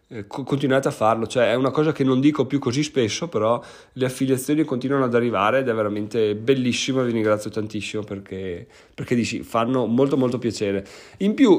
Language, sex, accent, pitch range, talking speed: Italian, male, native, 120-150 Hz, 180 wpm